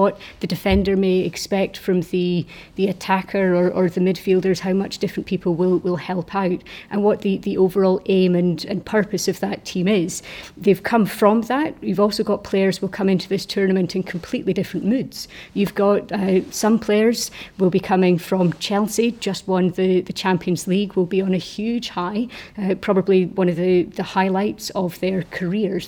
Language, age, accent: English, 30-49, British